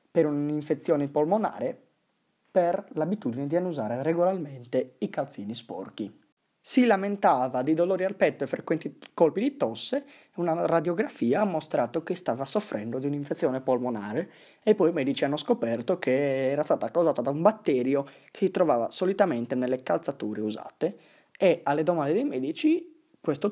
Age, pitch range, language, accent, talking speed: 30-49, 125-180 Hz, Italian, native, 150 wpm